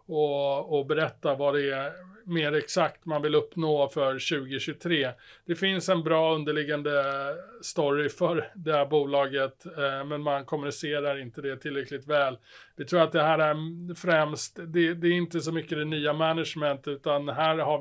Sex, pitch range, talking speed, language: male, 145-170 Hz, 165 wpm, Swedish